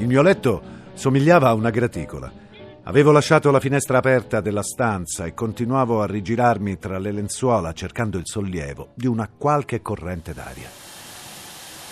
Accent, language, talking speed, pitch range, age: native, Italian, 145 wpm, 100-145 Hz, 50-69